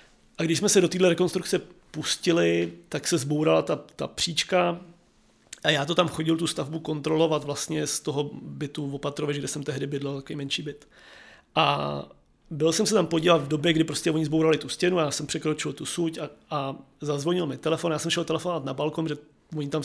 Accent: native